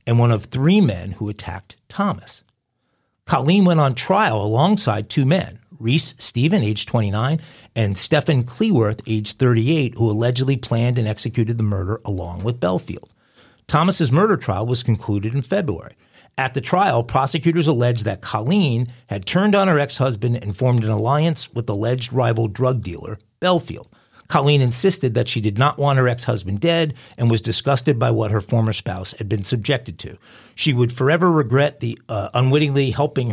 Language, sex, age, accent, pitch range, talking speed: English, male, 50-69, American, 110-140 Hz, 165 wpm